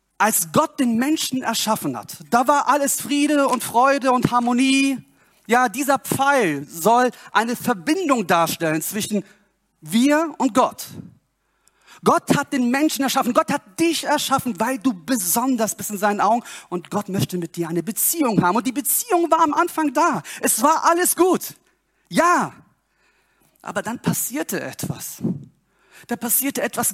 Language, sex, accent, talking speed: German, male, German, 150 wpm